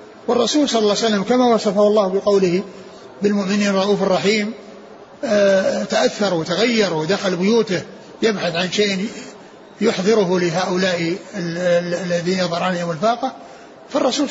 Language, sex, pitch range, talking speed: Arabic, male, 185-225 Hz, 105 wpm